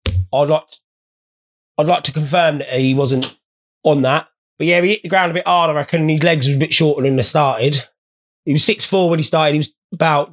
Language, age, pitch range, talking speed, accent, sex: English, 20-39, 125-180 Hz, 240 wpm, British, male